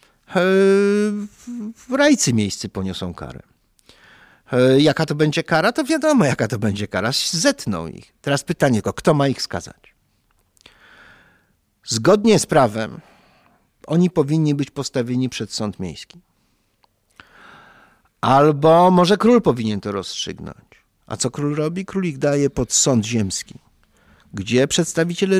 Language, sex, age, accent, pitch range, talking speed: Polish, male, 50-69, native, 105-160 Hz, 120 wpm